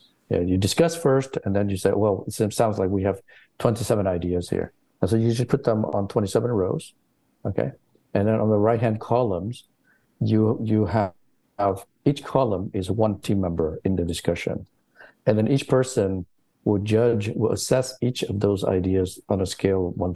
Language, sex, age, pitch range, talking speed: English, male, 50-69, 100-115 Hz, 190 wpm